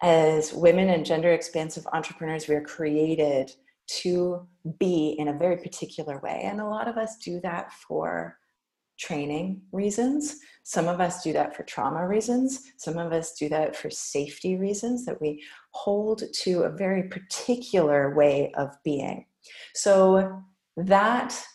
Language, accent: English, American